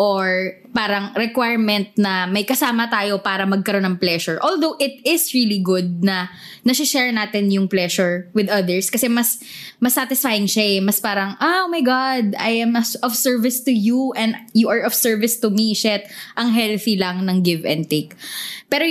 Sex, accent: female, Filipino